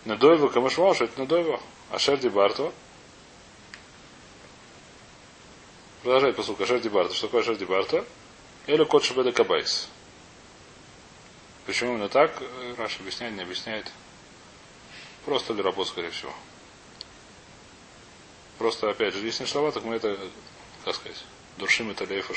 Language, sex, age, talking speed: Russian, male, 30-49, 125 wpm